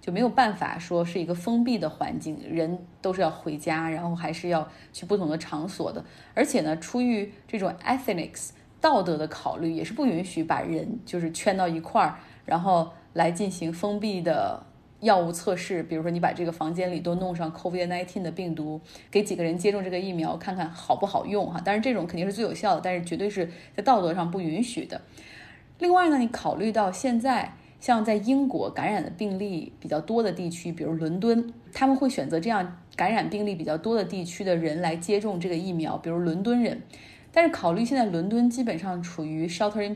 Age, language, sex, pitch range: 20-39, Chinese, female, 170-220 Hz